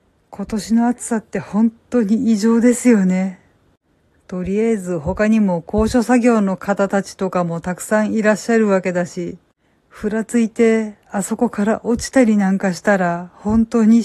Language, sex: Japanese, female